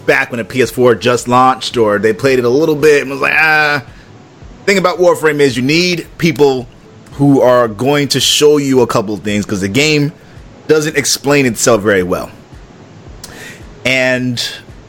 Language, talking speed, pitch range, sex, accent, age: English, 170 wpm, 105-140 Hz, male, American, 30-49